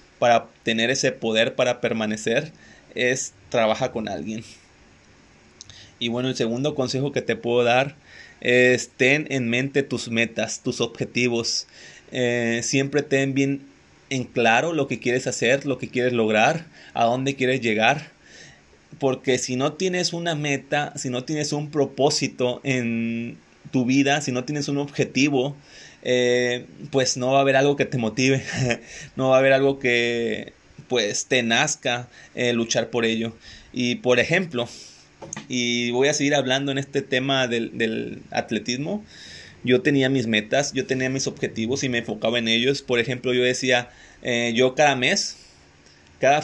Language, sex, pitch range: Spanish, male, 115-135 Hz